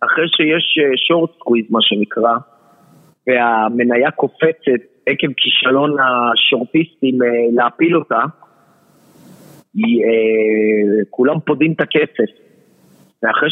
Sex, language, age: male, Hebrew, 40-59